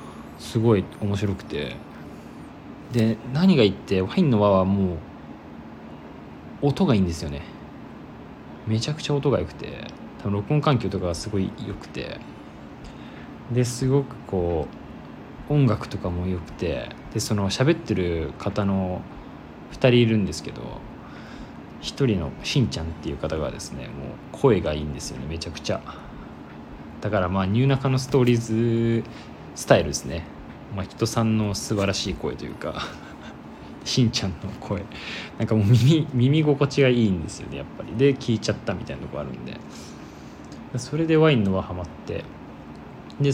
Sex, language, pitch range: male, Japanese, 90-120 Hz